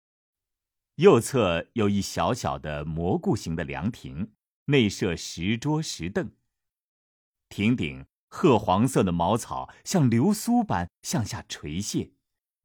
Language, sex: Chinese, male